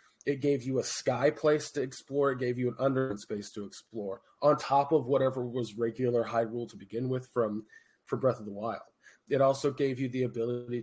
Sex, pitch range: male, 120-150 Hz